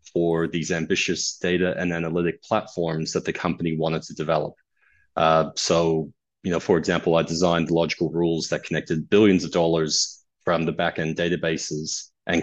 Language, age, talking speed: English, 30-49, 160 wpm